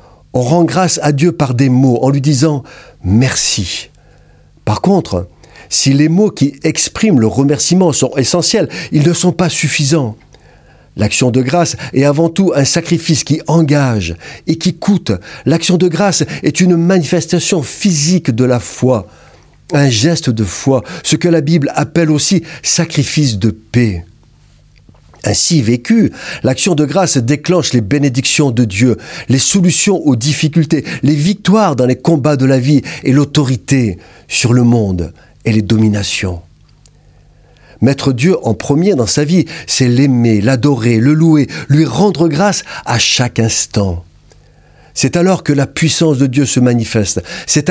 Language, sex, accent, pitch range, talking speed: French, male, French, 120-165 Hz, 155 wpm